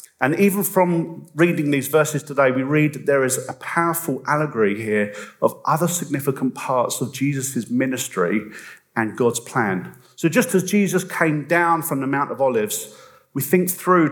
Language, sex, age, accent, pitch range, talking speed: English, male, 40-59, British, 130-170 Hz, 170 wpm